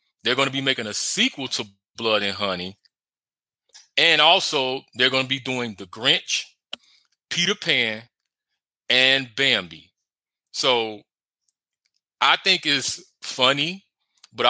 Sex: male